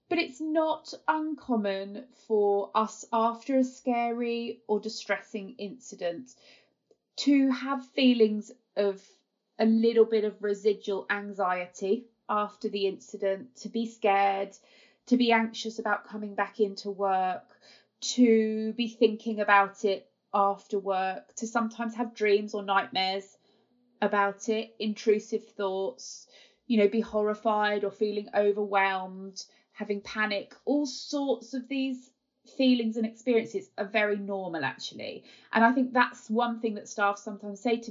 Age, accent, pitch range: 20-39, British, 205-255 Hz